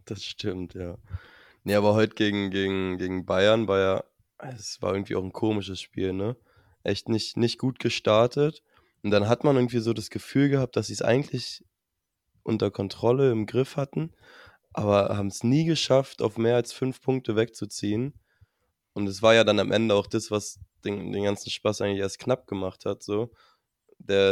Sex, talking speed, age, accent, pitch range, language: male, 185 wpm, 20-39, German, 100-115 Hz, German